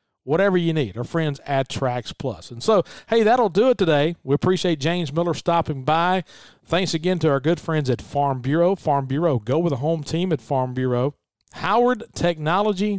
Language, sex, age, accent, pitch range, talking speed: English, male, 40-59, American, 140-185 Hz, 195 wpm